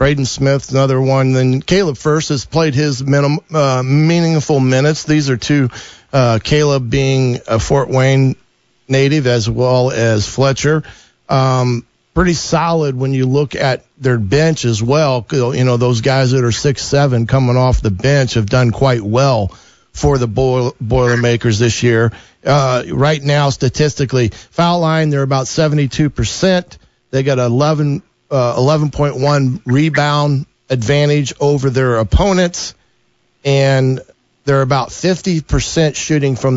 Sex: male